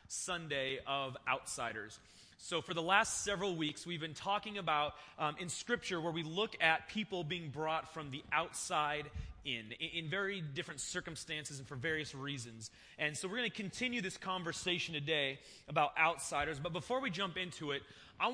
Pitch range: 145-185 Hz